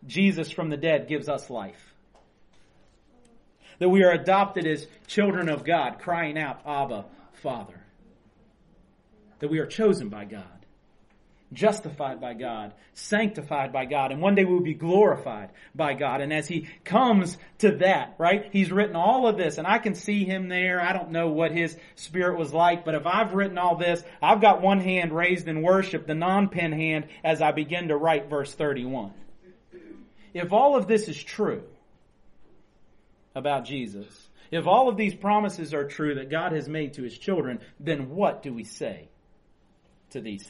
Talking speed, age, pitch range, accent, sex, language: 180 wpm, 40-59, 140-190 Hz, American, male, English